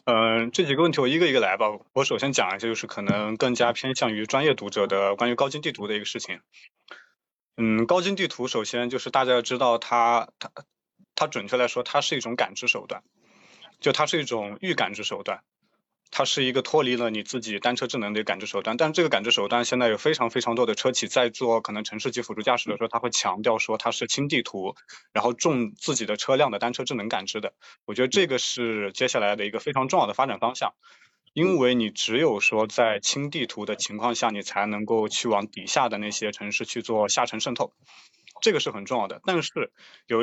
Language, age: Chinese, 20-39